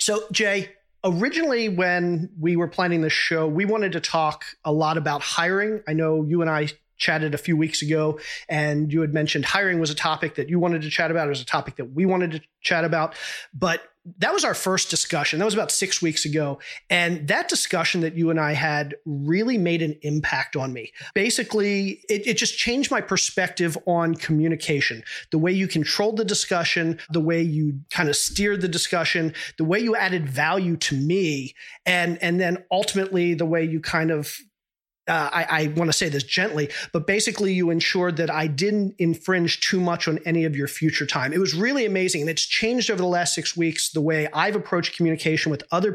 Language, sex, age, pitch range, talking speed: English, male, 30-49, 155-185 Hz, 205 wpm